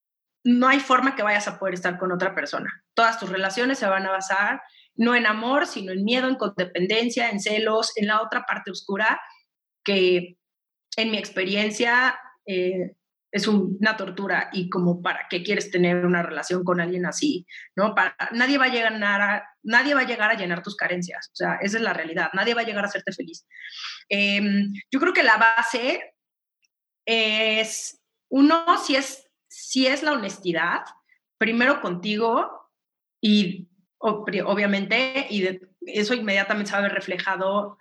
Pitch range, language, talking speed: 190-235 Hz, Spanish, 165 wpm